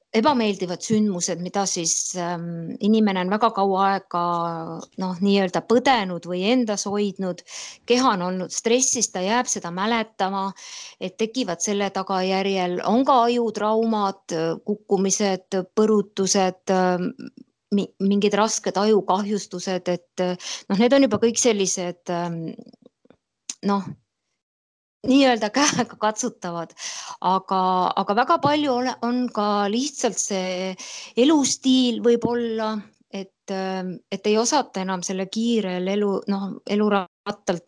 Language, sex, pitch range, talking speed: English, female, 185-225 Hz, 110 wpm